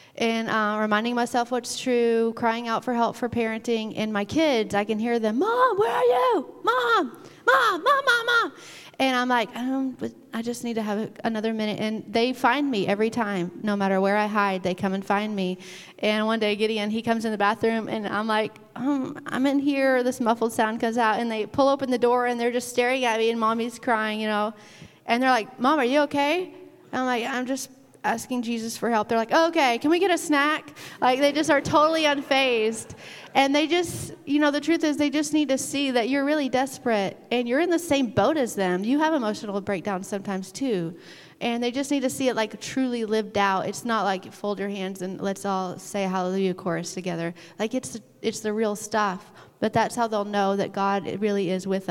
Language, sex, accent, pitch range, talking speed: English, female, American, 205-265 Hz, 225 wpm